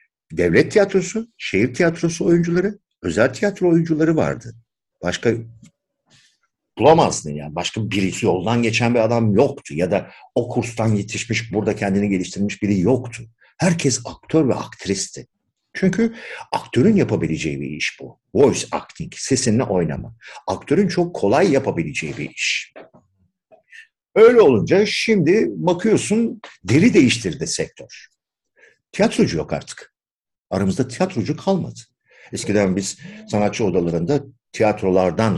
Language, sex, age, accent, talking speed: Turkish, male, 50-69, native, 115 wpm